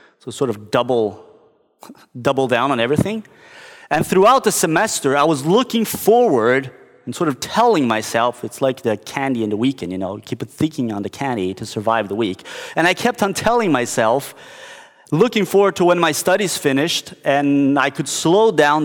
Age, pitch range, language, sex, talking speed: 30-49, 125-180 Hz, English, male, 185 wpm